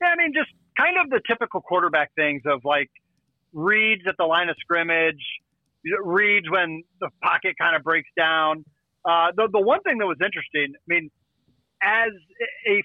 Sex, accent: male, American